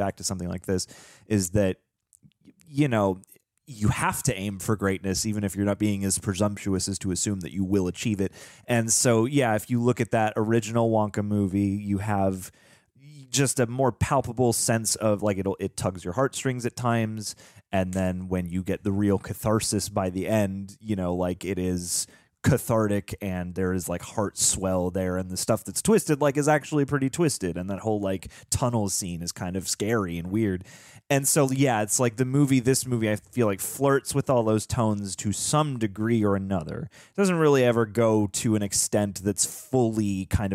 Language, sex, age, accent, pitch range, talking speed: English, male, 30-49, American, 95-120 Hz, 200 wpm